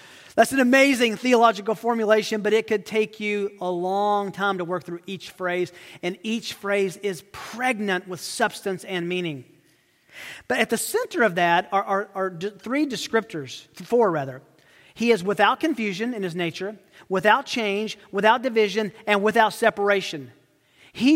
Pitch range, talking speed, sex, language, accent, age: 165-225 Hz, 155 wpm, male, English, American, 40-59